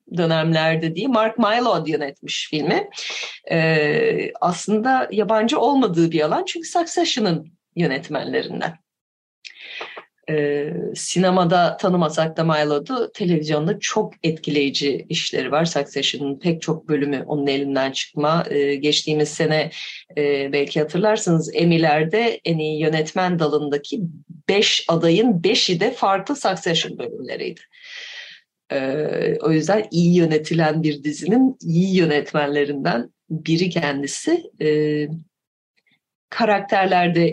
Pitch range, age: 150-200 Hz, 30-49